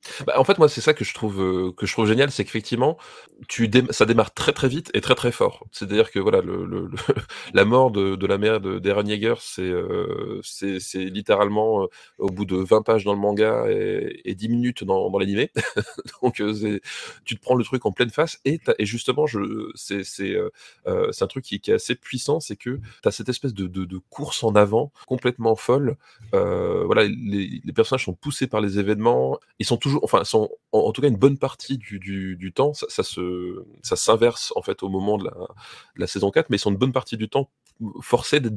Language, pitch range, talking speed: French, 100-135 Hz, 245 wpm